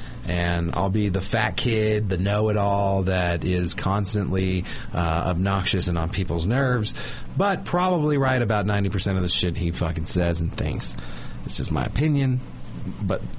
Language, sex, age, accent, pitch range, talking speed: English, male, 40-59, American, 95-120 Hz, 155 wpm